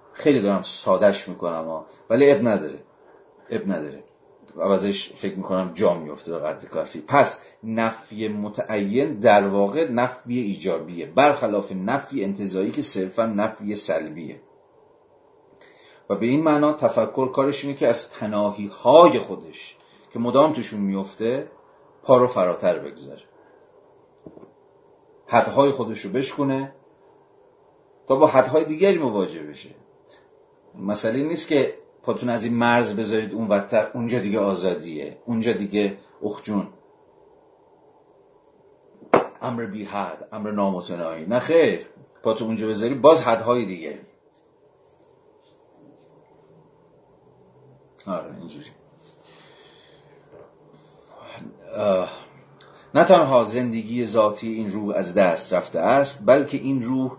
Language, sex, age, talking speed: Persian, male, 40-59, 105 wpm